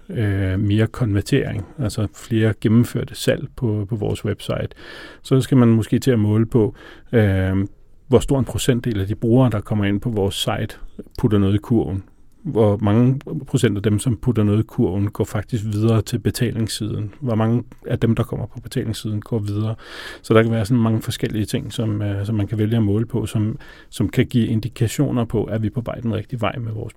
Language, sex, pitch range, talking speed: Danish, male, 105-120 Hz, 200 wpm